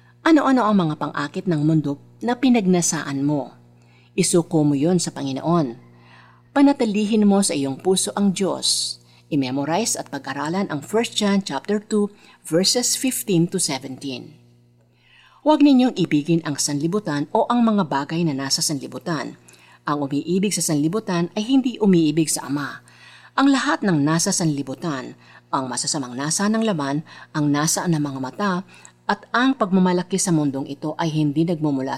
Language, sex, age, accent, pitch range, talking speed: Filipino, female, 50-69, native, 140-200 Hz, 145 wpm